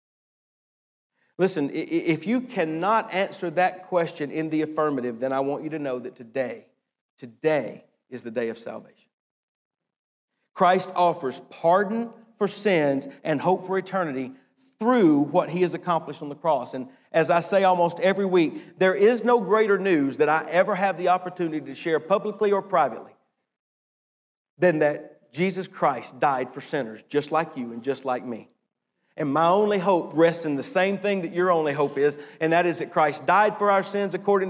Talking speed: 175 wpm